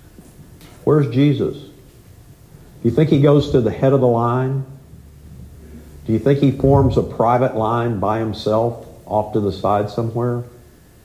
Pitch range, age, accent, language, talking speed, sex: 100-135 Hz, 50-69, American, English, 150 wpm, male